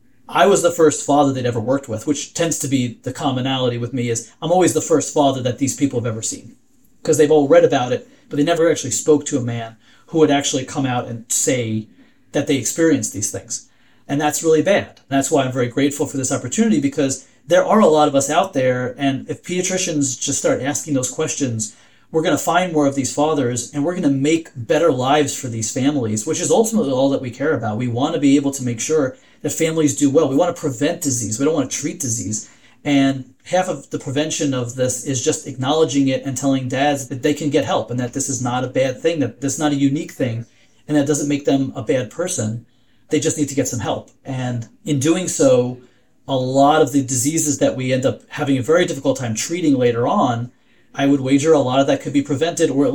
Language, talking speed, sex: English, 245 wpm, male